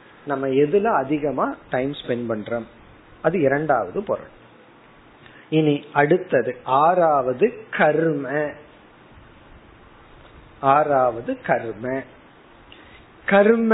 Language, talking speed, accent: Tamil, 50 wpm, native